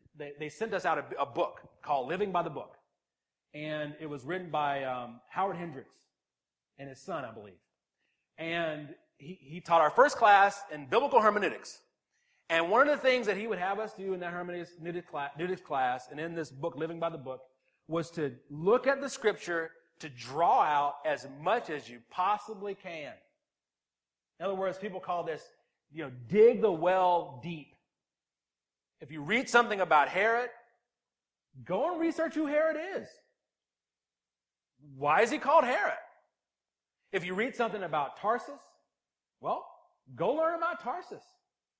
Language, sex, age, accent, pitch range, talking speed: English, male, 40-59, American, 150-225 Hz, 160 wpm